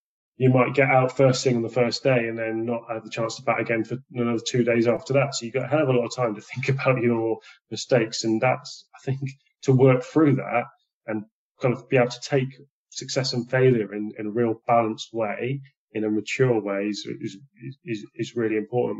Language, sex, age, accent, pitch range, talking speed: English, male, 20-39, British, 105-130 Hz, 235 wpm